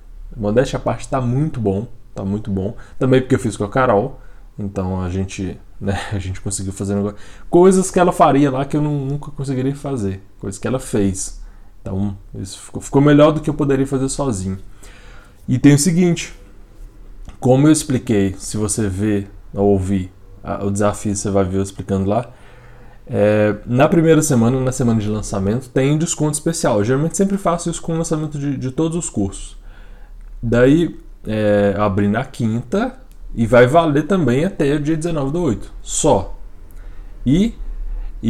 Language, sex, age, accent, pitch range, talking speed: Portuguese, male, 20-39, Brazilian, 100-145 Hz, 175 wpm